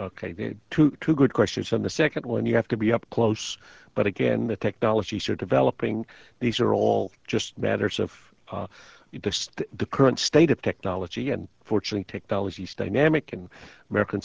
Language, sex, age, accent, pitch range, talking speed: English, male, 50-69, American, 100-120 Hz, 175 wpm